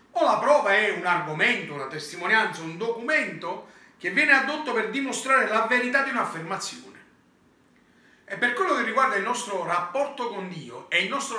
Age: 40-59